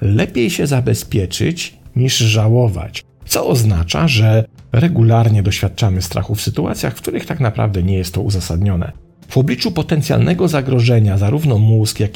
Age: 50-69